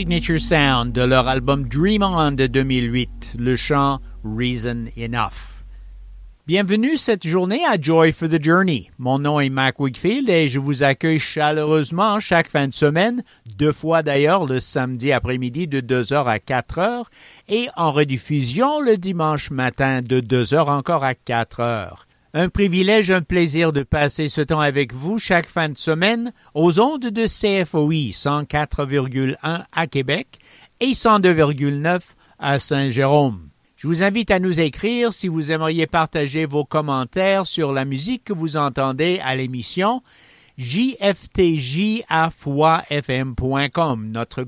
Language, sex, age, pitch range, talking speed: English, male, 50-69, 130-175 Hz, 140 wpm